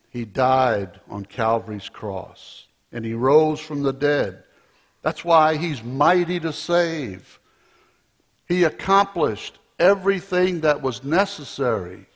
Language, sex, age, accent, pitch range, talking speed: English, male, 60-79, American, 140-195 Hz, 115 wpm